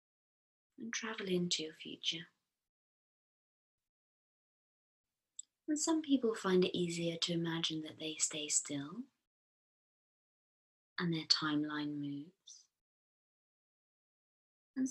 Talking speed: 90 wpm